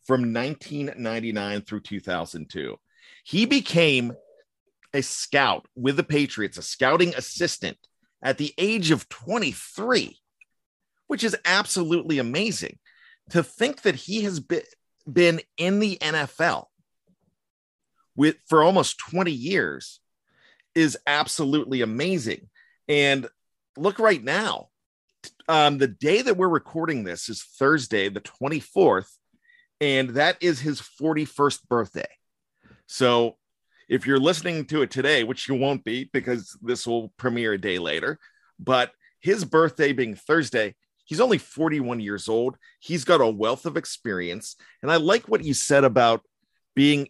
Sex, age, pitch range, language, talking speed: male, 40-59, 120-175 Hz, English, 135 wpm